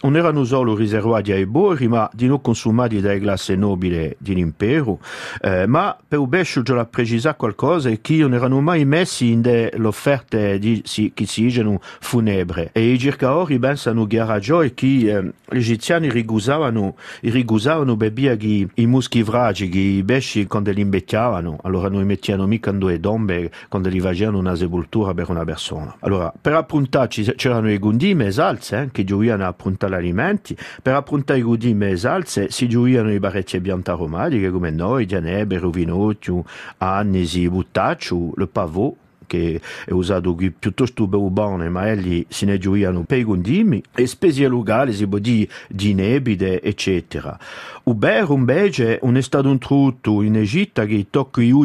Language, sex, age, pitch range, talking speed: French, male, 50-69, 95-125 Hz, 165 wpm